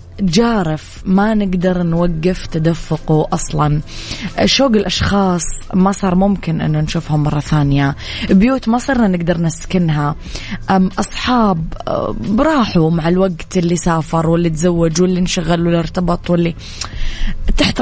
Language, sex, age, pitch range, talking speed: English, female, 20-39, 155-190 Hz, 115 wpm